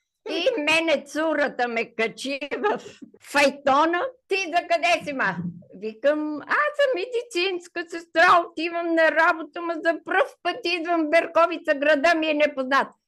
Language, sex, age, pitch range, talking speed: Bulgarian, female, 50-69, 230-320 Hz, 140 wpm